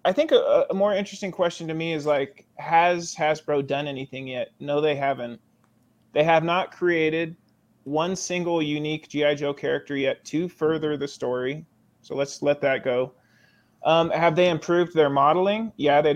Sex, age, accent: male, 20-39, American